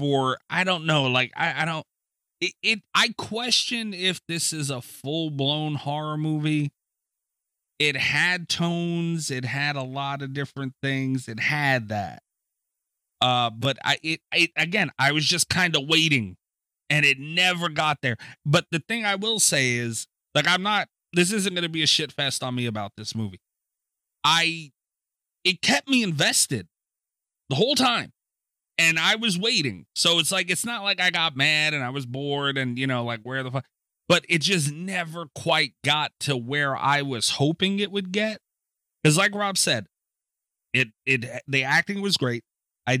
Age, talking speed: 30-49, 180 wpm